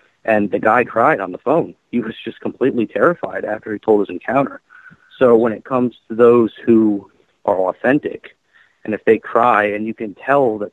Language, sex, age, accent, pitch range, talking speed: English, male, 30-49, American, 100-120 Hz, 195 wpm